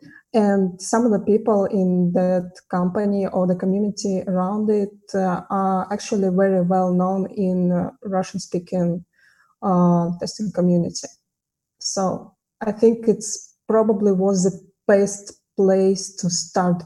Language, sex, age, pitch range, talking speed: English, female, 20-39, 185-215 Hz, 130 wpm